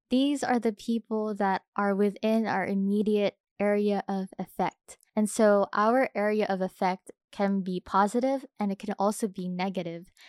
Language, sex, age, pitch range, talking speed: English, female, 10-29, 195-235 Hz, 155 wpm